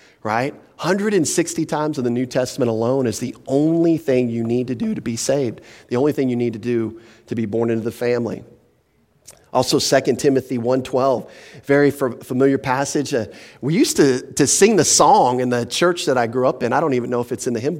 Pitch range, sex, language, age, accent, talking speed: 125-165 Hz, male, English, 40-59, American, 220 wpm